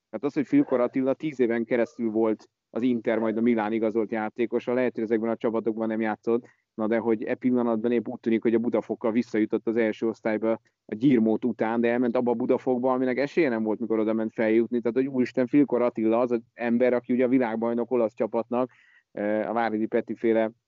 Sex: male